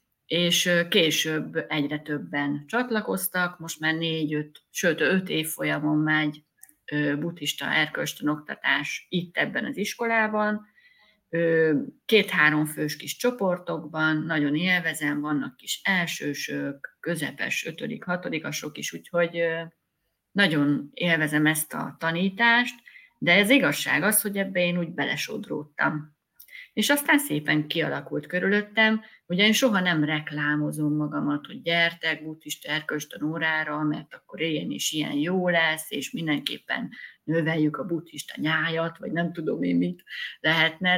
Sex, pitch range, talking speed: female, 150-200 Hz, 120 wpm